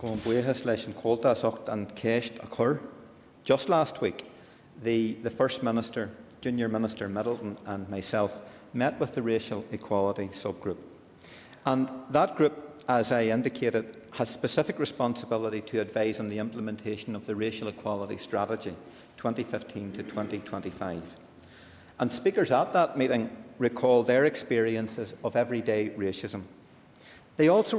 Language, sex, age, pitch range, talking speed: English, male, 50-69, 110-130 Hz, 110 wpm